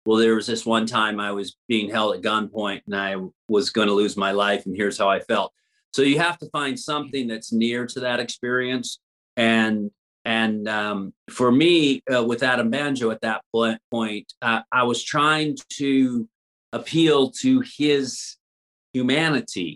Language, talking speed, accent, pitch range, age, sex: English, 175 wpm, American, 110-135 Hz, 40-59, male